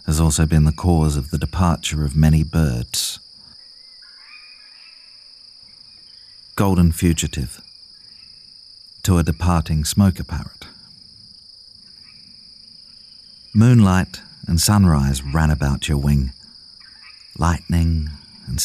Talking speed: 85 wpm